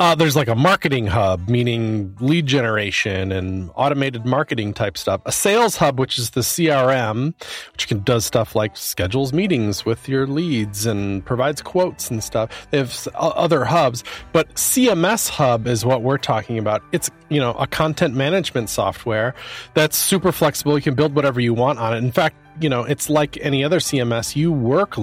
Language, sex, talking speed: English, male, 185 wpm